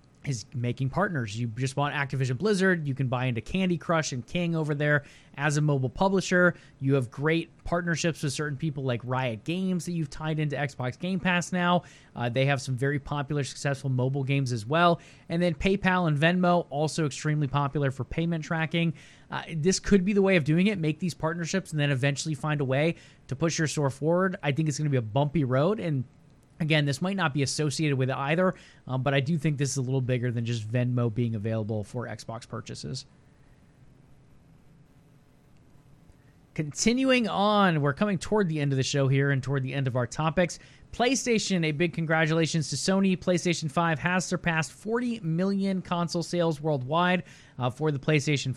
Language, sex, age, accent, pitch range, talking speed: English, male, 20-39, American, 135-175 Hz, 195 wpm